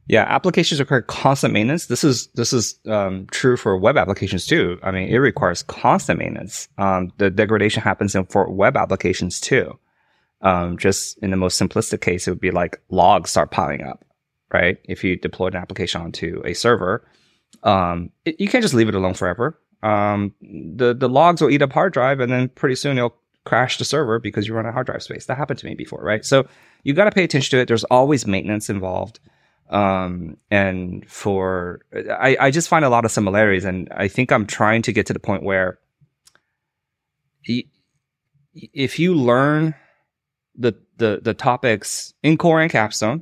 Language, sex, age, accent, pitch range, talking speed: English, male, 20-39, American, 95-135 Hz, 195 wpm